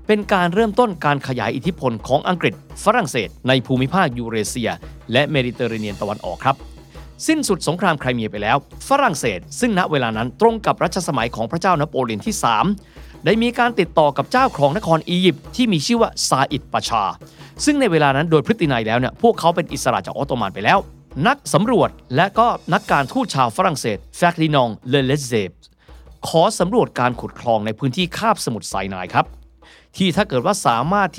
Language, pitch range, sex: Thai, 120-180 Hz, male